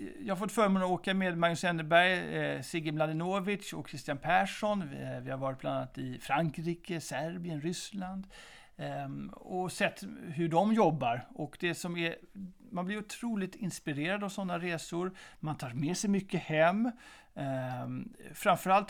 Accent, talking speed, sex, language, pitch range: native, 155 wpm, male, Swedish, 155-205 Hz